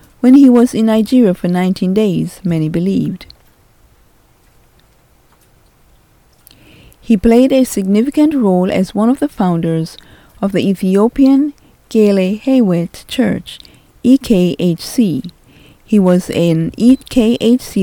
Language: English